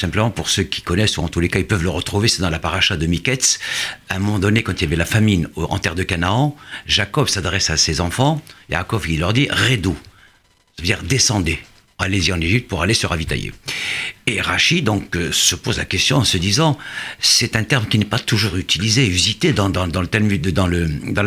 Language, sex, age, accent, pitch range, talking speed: French, male, 60-79, French, 90-115 Hz, 235 wpm